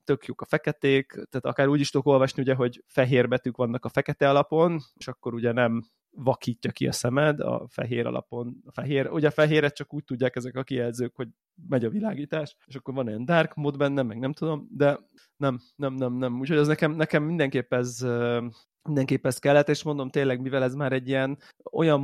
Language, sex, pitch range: Hungarian, male, 120-140 Hz